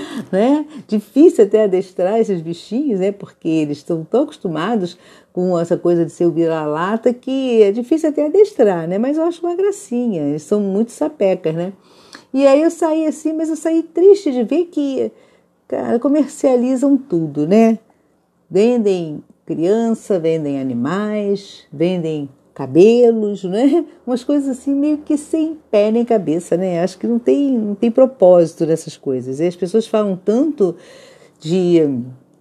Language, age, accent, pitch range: Portuguese, 50-69, Brazilian, 175-260 Hz